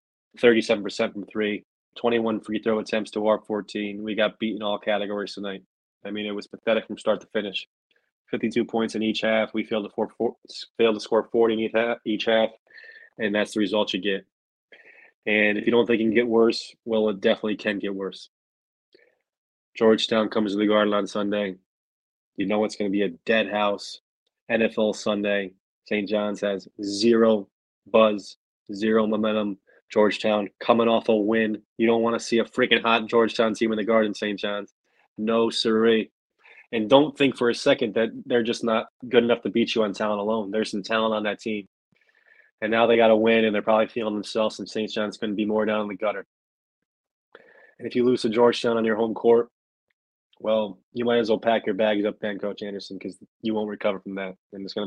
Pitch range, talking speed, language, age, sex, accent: 105-115 Hz, 200 wpm, English, 20-39, male, American